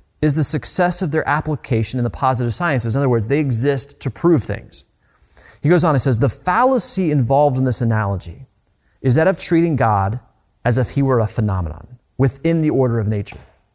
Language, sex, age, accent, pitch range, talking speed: English, male, 30-49, American, 105-145 Hz, 195 wpm